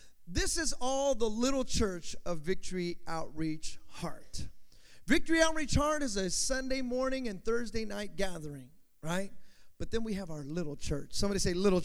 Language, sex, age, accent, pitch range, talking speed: English, male, 30-49, American, 155-255 Hz, 160 wpm